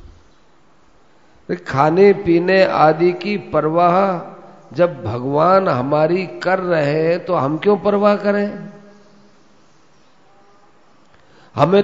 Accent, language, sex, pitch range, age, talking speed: native, Hindi, male, 135-175 Hz, 50-69, 85 wpm